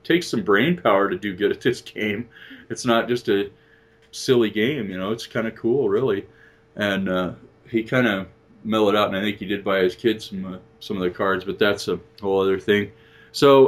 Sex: male